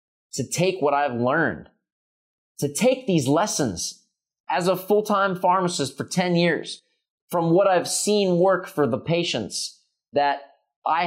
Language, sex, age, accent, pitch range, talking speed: English, male, 30-49, American, 115-175 Hz, 140 wpm